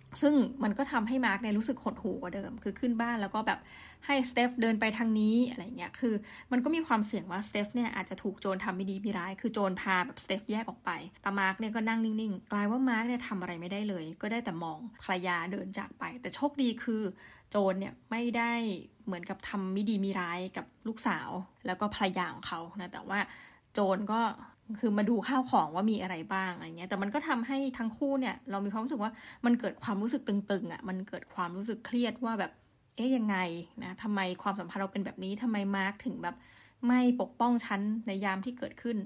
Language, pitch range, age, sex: Thai, 190-235 Hz, 20-39, female